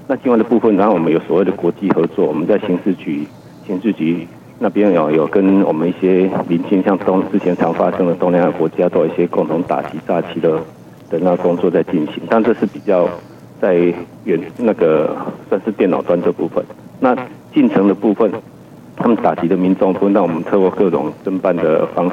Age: 50-69